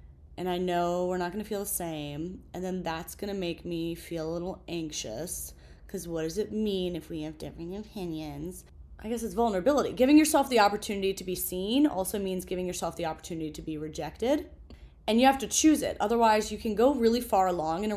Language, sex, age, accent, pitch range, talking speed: English, female, 30-49, American, 170-230 Hz, 215 wpm